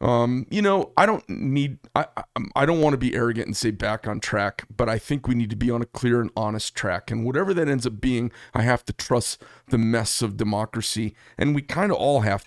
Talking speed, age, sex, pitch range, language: 245 wpm, 40-59, male, 115-130 Hz, English